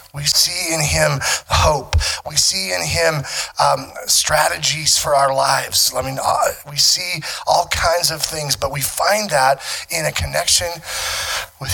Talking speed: 155 wpm